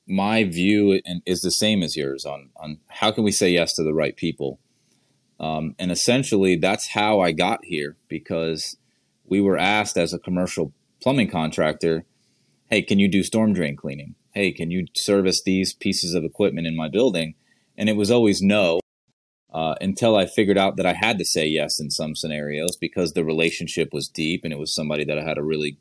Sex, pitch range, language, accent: male, 80-100 Hz, English, American